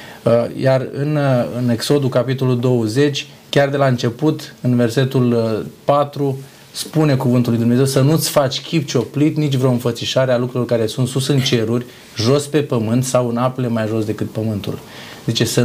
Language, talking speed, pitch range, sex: Romanian, 170 wpm, 115-135 Hz, male